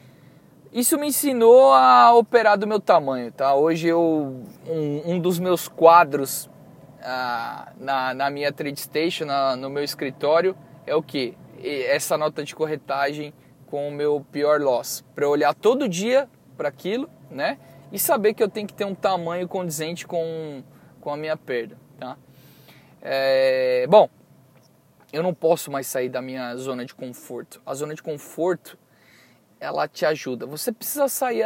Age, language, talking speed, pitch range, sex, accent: 20-39, Spanish, 150 wpm, 140-185 Hz, male, Brazilian